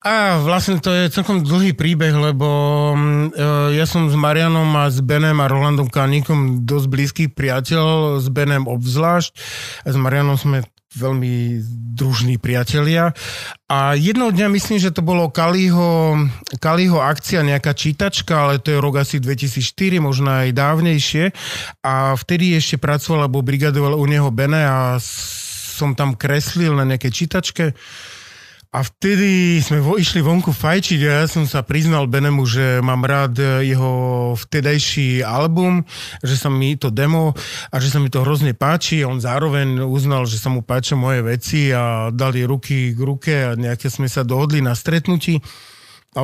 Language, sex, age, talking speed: Slovak, male, 30-49, 155 wpm